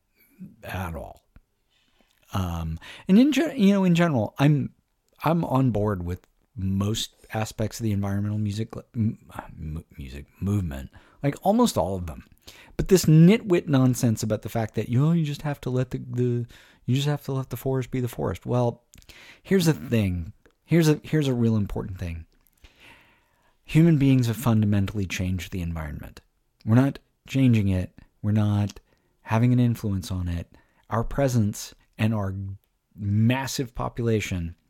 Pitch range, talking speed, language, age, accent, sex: 100-130 Hz, 155 wpm, English, 50-69, American, male